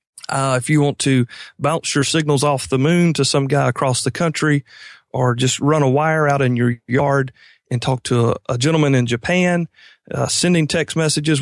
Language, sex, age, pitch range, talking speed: English, male, 40-59, 130-160 Hz, 200 wpm